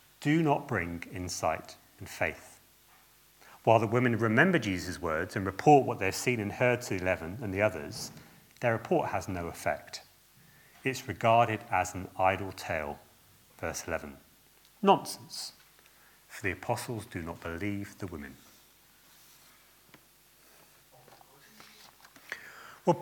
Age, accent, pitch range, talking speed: 40-59, British, 95-140 Hz, 125 wpm